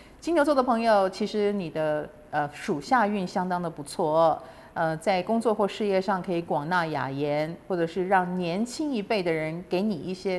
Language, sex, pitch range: Chinese, female, 165-215 Hz